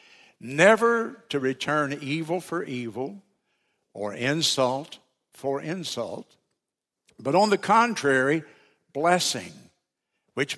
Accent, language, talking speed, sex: American, English, 90 wpm, male